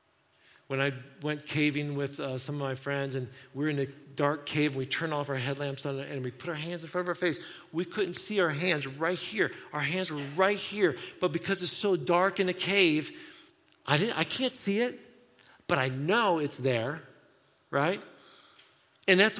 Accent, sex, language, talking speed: American, male, English, 210 wpm